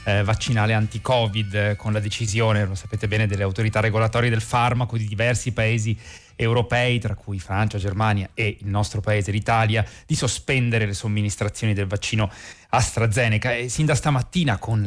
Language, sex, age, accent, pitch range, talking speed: Italian, male, 30-49, native, 105-120 Hz, 160 wpm